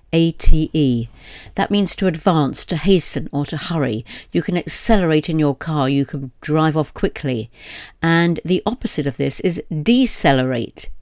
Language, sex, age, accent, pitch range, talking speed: English, female, 60-79, British, 140-180 Hz, 155 wpm